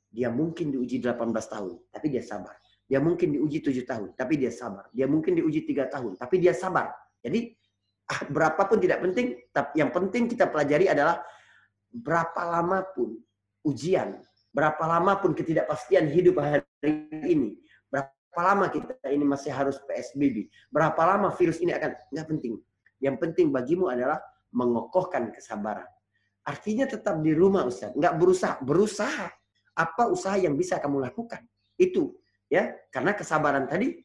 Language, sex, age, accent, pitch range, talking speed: Indonesian, male, 30-49, native, 130-190 Hz, 145 wpm